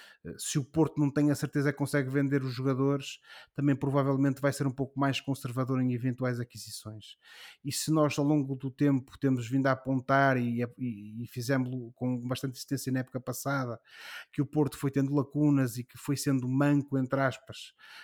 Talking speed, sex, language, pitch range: 185 wpm, male, Portuguese, 130-145 Hz